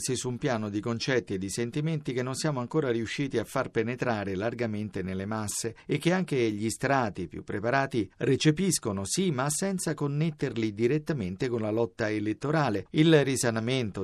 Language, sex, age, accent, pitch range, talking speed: Italian, male, 50-69, native, 115-155 Hz, 160 wpm